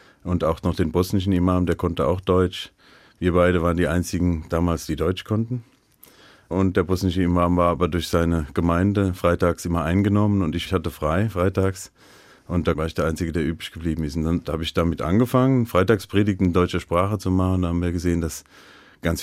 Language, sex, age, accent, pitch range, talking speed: German, male, 40-59, German, 85-100 Hz, 200 wpm